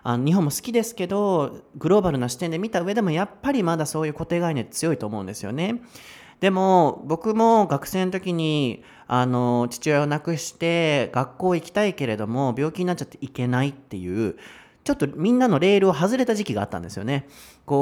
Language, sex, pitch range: Japanese, male, 120-190 Hz